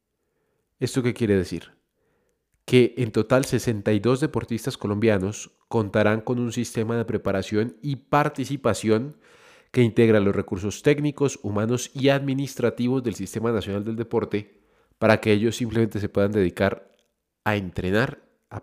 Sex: male